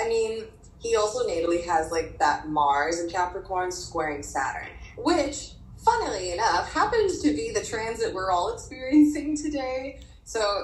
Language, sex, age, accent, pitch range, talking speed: English, female, 20-39, American, 160-225 Hz, 145 wpm